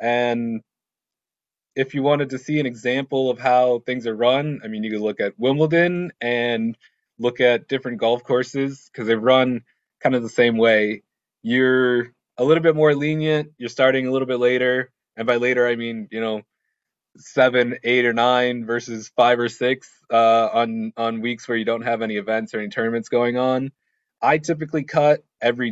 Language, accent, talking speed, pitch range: English, American, 185 wpm, 110-130 Hz